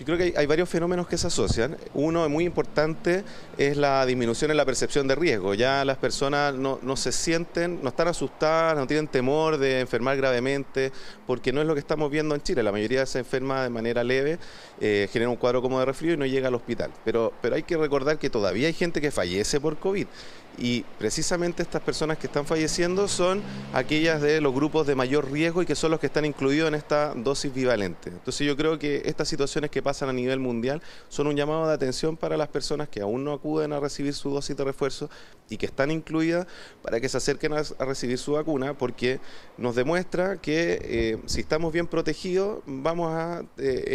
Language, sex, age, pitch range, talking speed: Spanish, male, 30-49, 130-160 Hz, 215 wpm